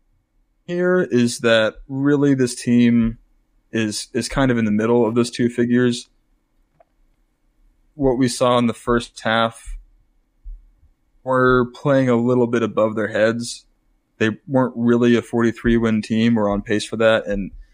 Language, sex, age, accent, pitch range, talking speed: English, male, 20-39, American, 110-120 Hz, 150 wpm